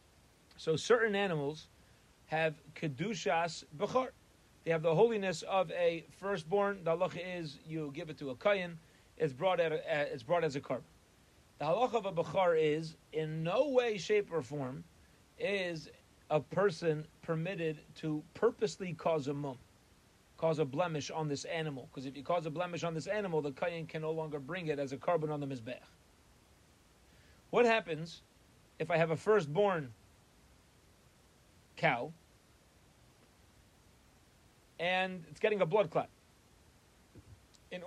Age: 40-59